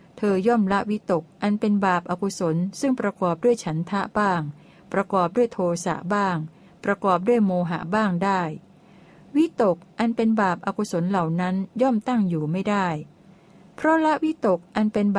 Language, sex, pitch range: Thai, female, 175-210 Hz